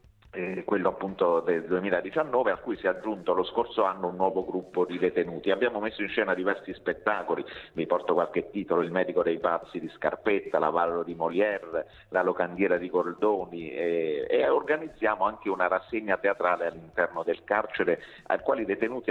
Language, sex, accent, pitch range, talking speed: Italian, male, native, 85-105 Hz, 175 wpm